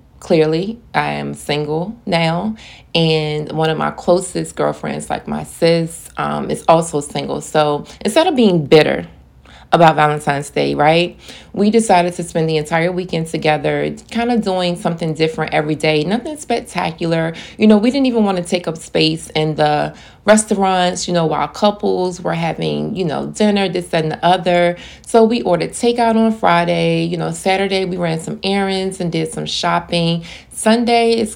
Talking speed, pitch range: 170 wpm, 155-185 Hz